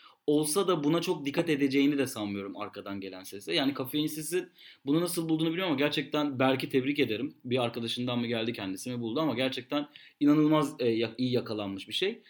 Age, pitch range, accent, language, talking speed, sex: 30-49, 130-175 Hz, native, Turkish, 175 wpm, male